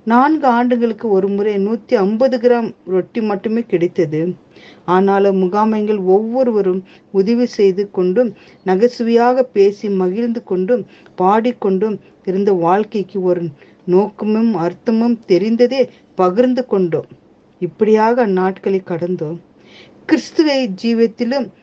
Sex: female